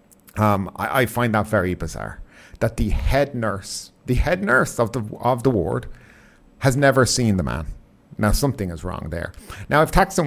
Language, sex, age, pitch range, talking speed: English, male, 50-69, 105-140 Hz, 185 wpm